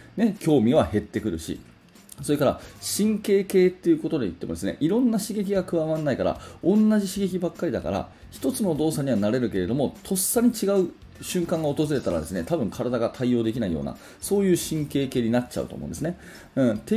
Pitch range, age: 110-155 Hz, 30-49